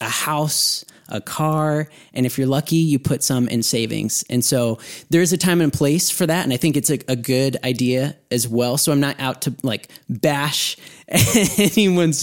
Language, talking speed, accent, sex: English, 200 wpm, American, male